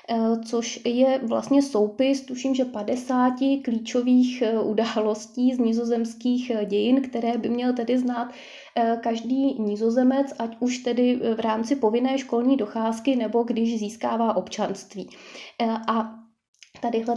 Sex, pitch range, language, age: female, 220-250 Hz, Czech, 20-39